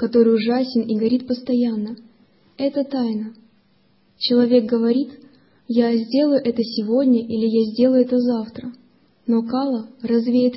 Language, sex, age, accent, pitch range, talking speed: Russian, female, 20-39, native, 230-255 Hz, 120 wpm